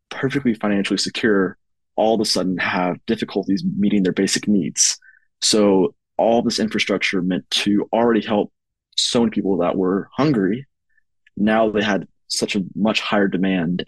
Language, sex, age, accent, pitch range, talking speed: English, male, 20-39, American, 95-110 Hz, 150 wpm